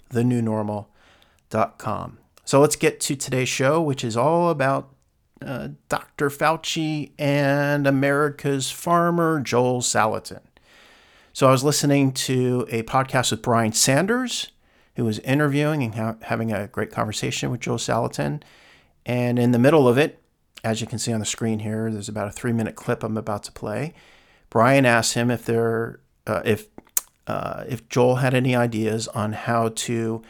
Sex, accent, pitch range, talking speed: male, American, 110-140 Hz, 165 wpm